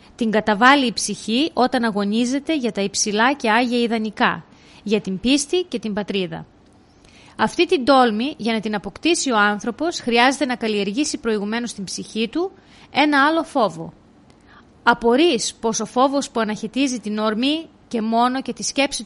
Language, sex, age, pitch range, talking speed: Greek, female, 30-49, 215-275 Hz, 155 wpm